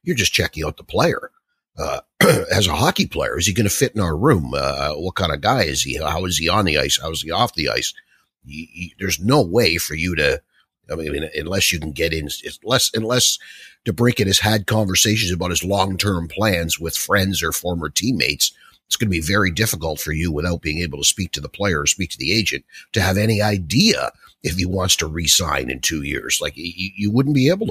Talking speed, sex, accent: 225 wpm, male, American